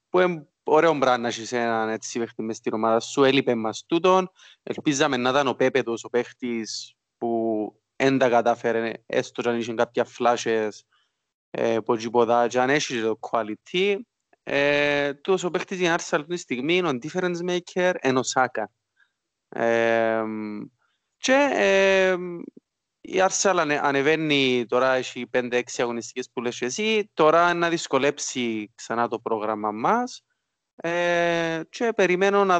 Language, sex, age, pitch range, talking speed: Greek, male, 20-39, 115-170 Hz, 100 wpm